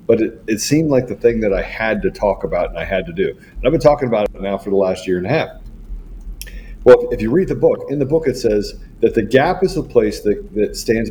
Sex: male